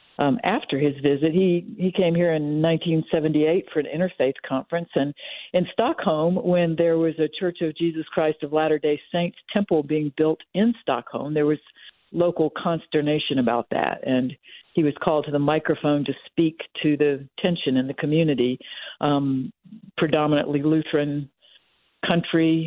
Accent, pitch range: American, 145-170 Hz